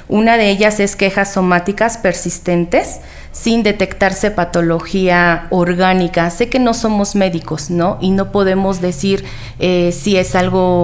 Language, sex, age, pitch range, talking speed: Spanish, female, 30-49, 180-200 Hz, 140 wpm